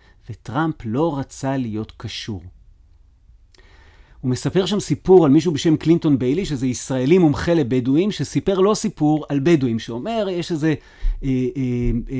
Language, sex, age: Hebrew, male, 30-49